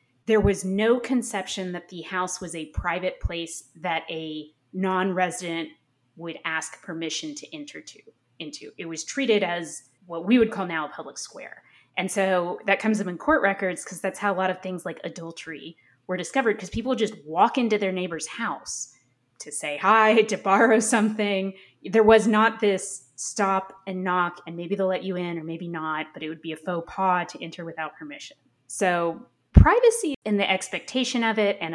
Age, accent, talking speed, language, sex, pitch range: 20-39, American, 190 wpm, English, female, 165-205 Hz